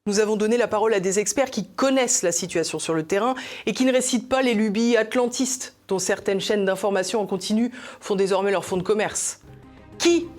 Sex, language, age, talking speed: female, French, 30-49, 210 wpm